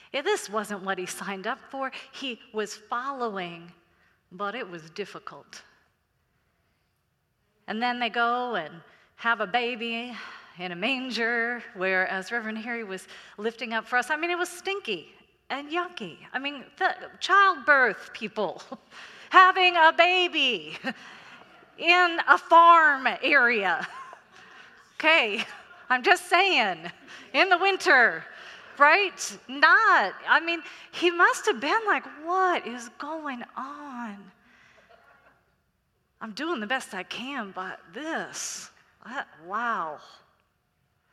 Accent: American